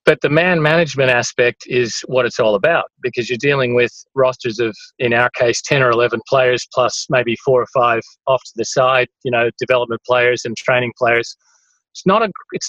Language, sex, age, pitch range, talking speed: English, male, 30-49, 125-150 Hz, 205 wpm